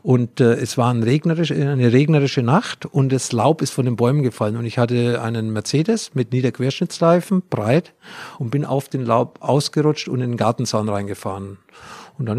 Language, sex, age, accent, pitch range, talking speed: German, male, 50-69, German, 115-140 Hz, 185 wpm